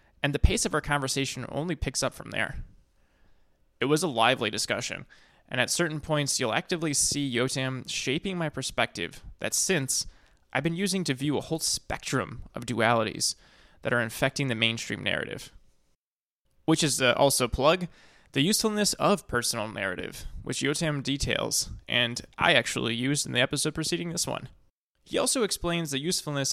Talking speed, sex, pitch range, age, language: 165 wpm, male, 120-155 Hz, 20-39, English